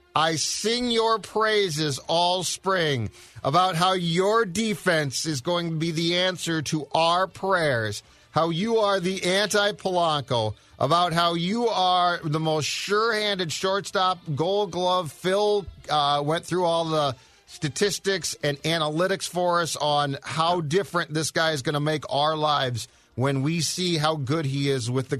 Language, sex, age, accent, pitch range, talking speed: English, male, 40-59, American, 150-195 Hz, 155 wpm